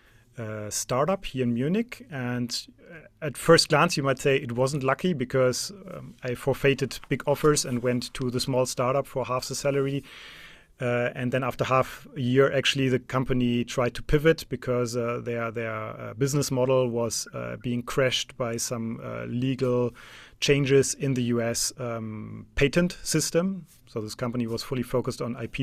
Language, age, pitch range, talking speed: English, 30-49, 120-135 Hz, 175 wpm